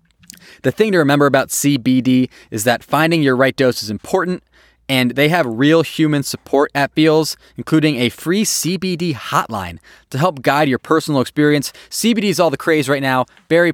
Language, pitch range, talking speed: English, 130-165 Hz, 180 wpm